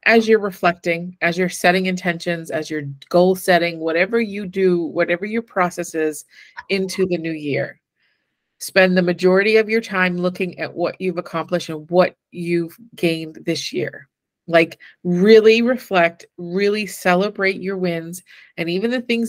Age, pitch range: 30-49, 170-200 Hz